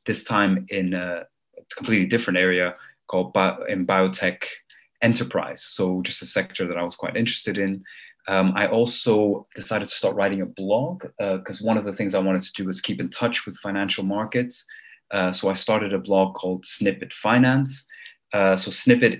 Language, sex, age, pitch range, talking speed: English, male, 30-49, 95-120 Hz, 190 wpm